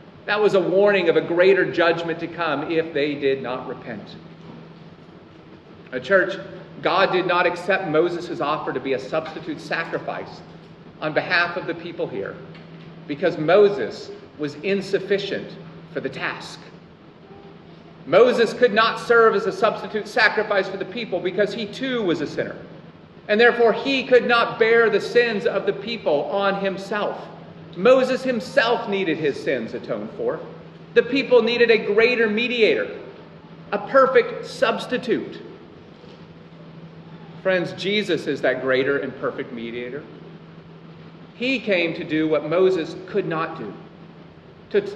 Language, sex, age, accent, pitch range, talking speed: English, male, 40-59, American, 170-225 Hz, 140 wpm